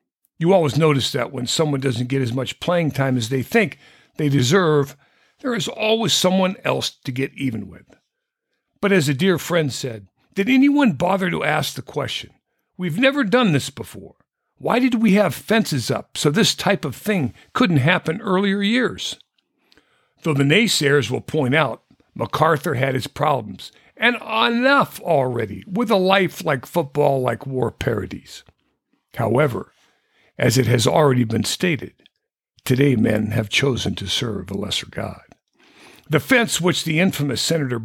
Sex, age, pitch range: male, 60-79, 125-190 Hz